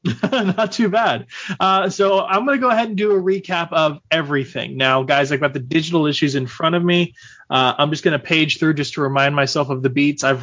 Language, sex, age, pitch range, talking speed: English, male, 20-39, 135-165 Hz, 240 wpm